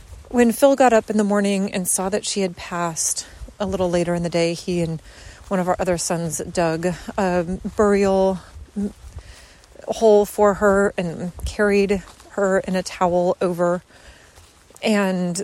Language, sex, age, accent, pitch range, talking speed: English, female, 30-49, American, 180-235 Hz, 155 wpm